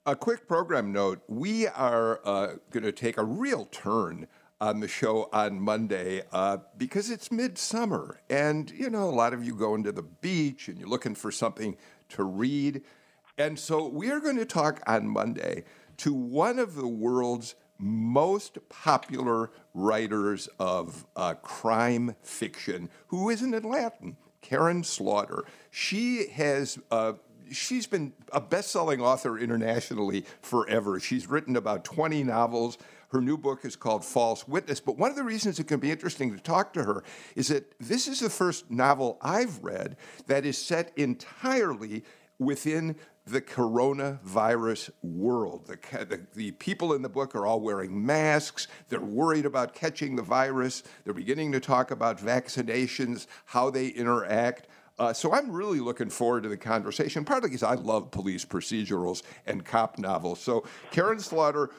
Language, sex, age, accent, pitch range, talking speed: English, male, 50-69, American, 115-160 Hz, 160 wpm